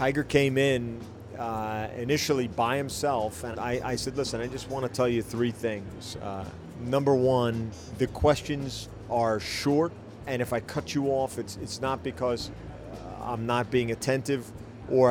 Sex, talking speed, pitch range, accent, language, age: male, 170 wpm, 110-130 Hz, American, English, 40-59